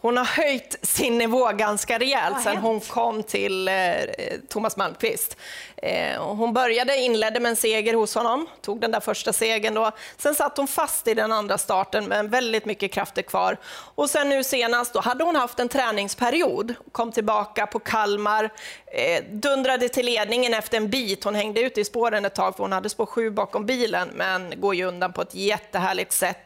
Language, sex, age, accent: Swedish, female, 30-49, native